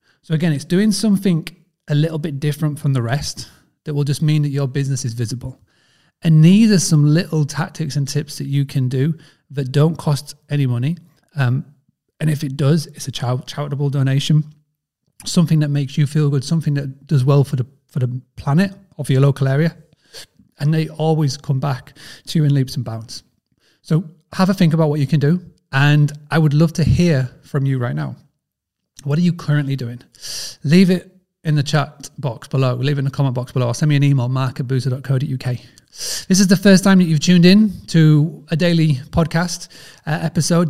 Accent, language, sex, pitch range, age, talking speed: British, English, male, 135-160 Hz, 30-49, 205 wpm